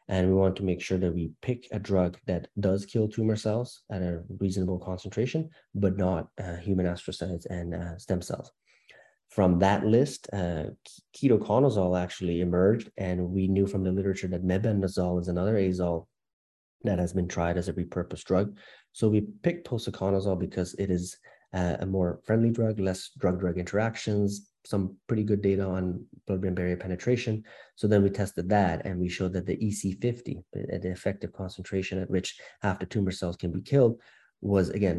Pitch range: 90-105 Hz